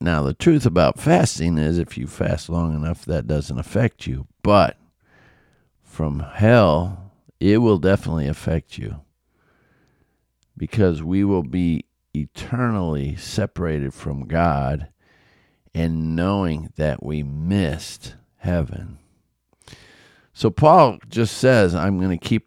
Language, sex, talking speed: English, male, 120 wpm